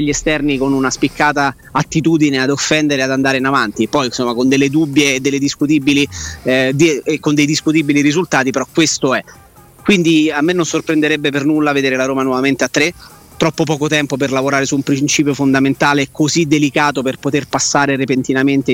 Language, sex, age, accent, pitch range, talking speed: Italian, male, 30-49, native, 135-155 Hz, 185 wpm